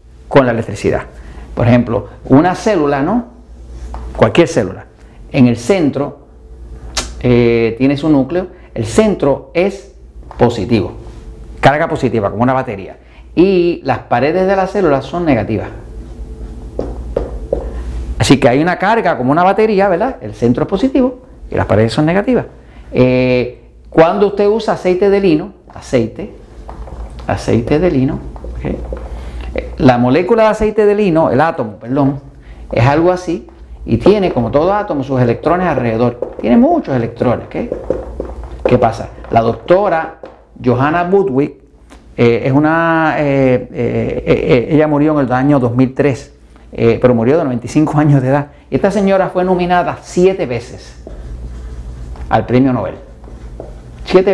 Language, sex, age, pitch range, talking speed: Spanish, male, 50-69, 105-170 Hz, 135 wpm